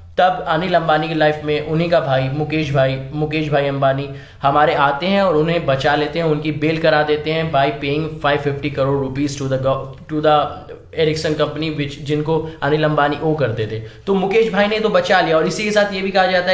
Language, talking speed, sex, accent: Hindi, 225 wpm, male, native